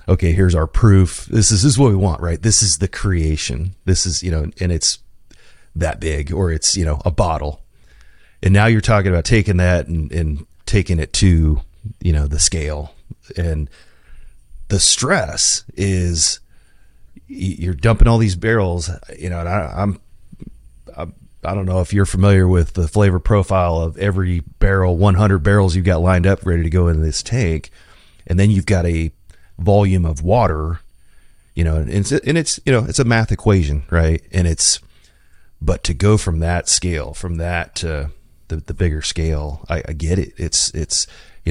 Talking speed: 185 wpm